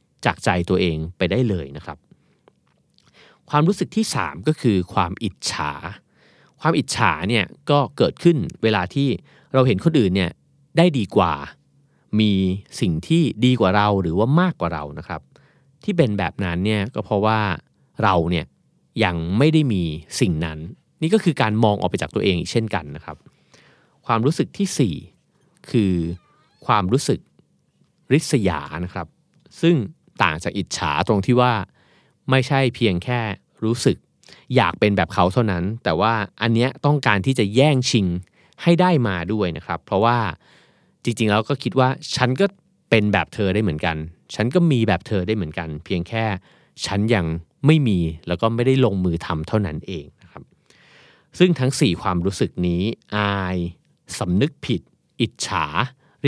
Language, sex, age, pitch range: Thai, male, 30-49, 90-135 Hz